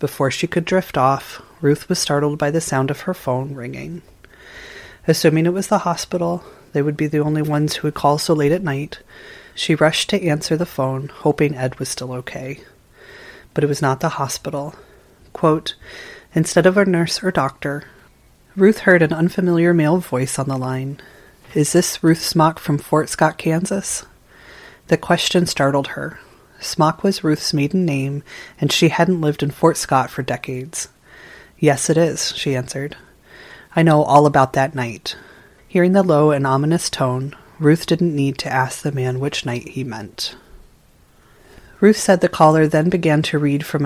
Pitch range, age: 140-175 Hz, 30-49